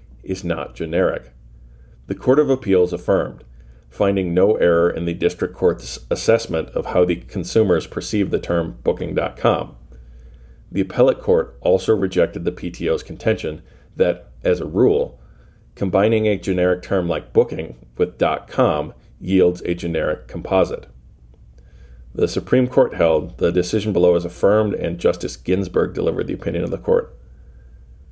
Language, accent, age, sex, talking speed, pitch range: English, American, 40-59, male, 140 wpm, 65-100 Hz